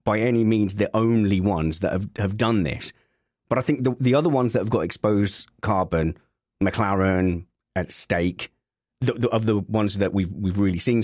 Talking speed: 195 wpm